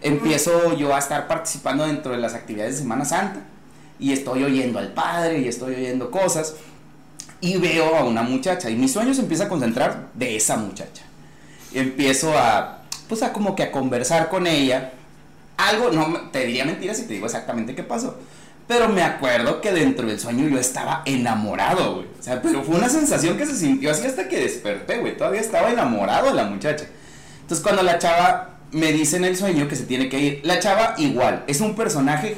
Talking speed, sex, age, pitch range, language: 200 wpm, male, 30-49, 130-190 Hz, Spanish